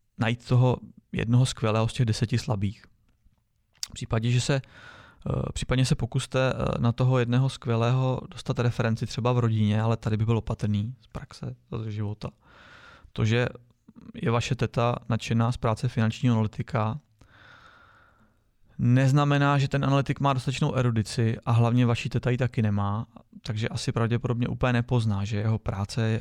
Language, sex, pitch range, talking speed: Czech, male, 110-125 Hz, 145 wpm